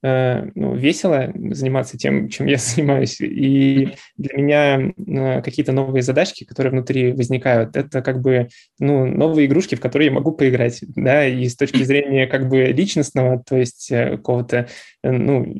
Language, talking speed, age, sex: Russian, 160 wpm, 20-39, male